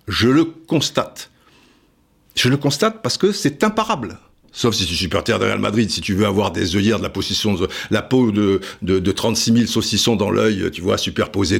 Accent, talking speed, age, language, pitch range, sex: French, 210 wpm, 60-79, French, 95-140 Hz, male